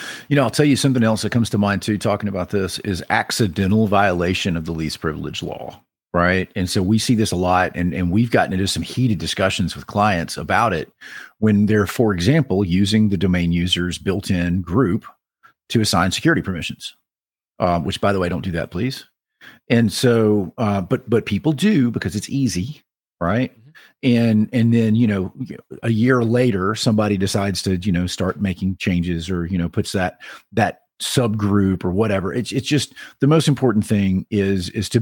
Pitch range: 90-110 Hz